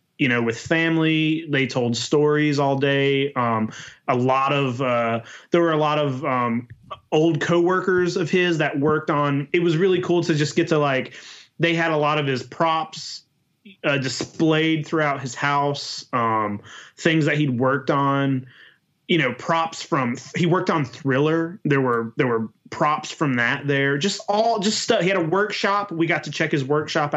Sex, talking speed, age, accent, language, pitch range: male, 185 wpm, 30-49, American, English, 125-160 Hz